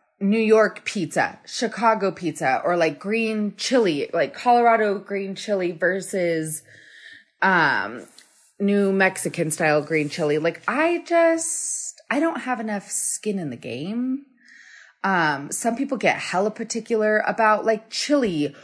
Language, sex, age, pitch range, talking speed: English, female, 20-39, 185-250 Hz, 130 wpm